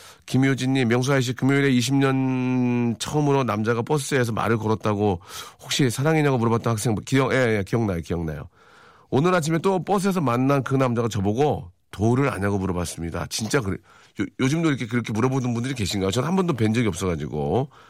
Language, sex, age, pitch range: Korean, male, 40-59, 105-145 Hz